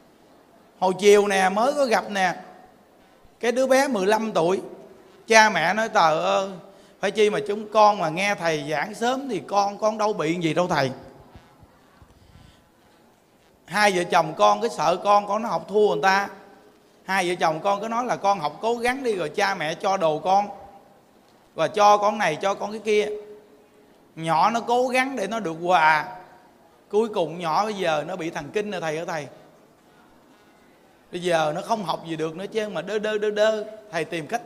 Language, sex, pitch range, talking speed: Vietnamese, male, 185-235 Hz, 190 wpm